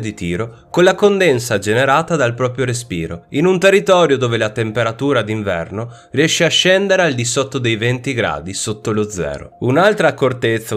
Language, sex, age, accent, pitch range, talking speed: Italian, male, 30-49, native, 115-170 Hz, 165 wpm